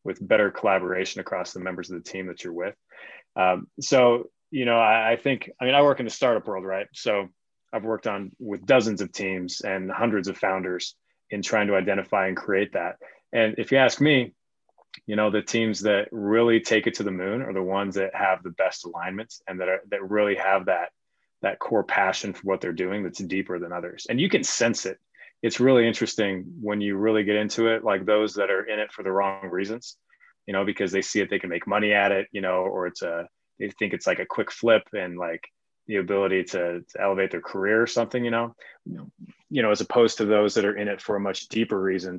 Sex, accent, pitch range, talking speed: male, American, 95-110 Hz, 235 wpm